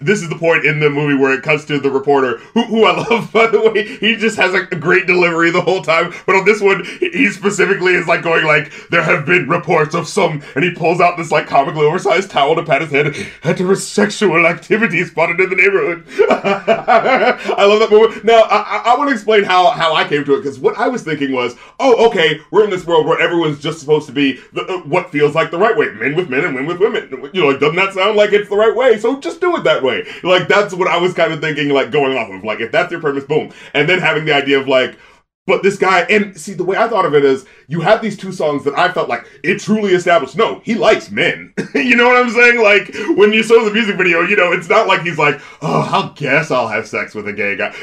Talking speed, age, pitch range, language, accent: 270 wpm, 30-49, 160-215 Hz, English, American